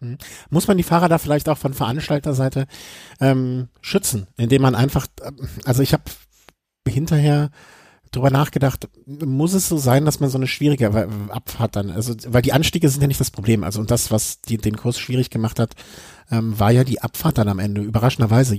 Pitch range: 115-135 Hz